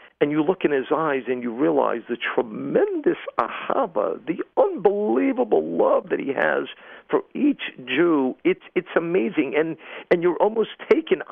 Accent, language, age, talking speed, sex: American, English, 50-69, 155 wpm, male